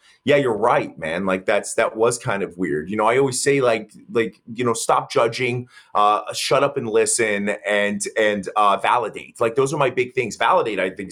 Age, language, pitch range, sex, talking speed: 30-49, English, 115-150 Hz, male, 215 wpm